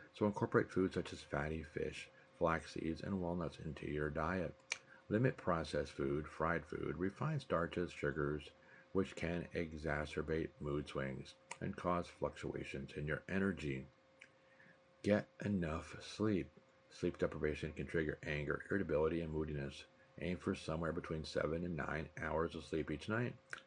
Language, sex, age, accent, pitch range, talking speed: English, male, 60-79, American, 75-95 Hz, 140 wpm